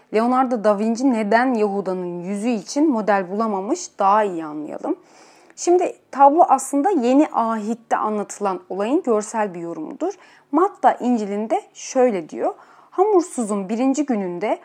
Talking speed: 120 wpm